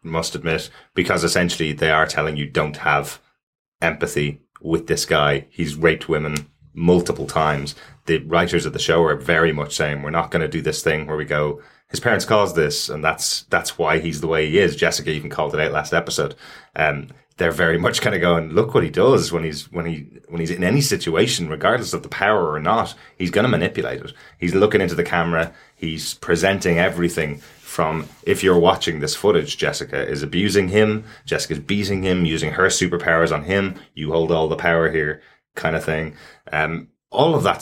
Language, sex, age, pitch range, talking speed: English, male, 20-39, 80-90 Hz, 205 wpm